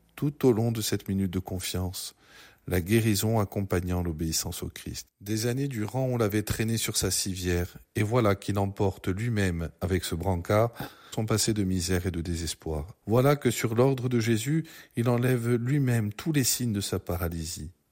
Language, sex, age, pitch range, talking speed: French, male, 50-69, 95-115 Hz, 180 wpm